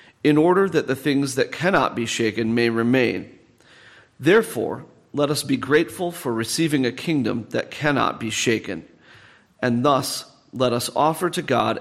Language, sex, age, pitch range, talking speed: English, male, 40-59, 120-145 Hz, 160 wpm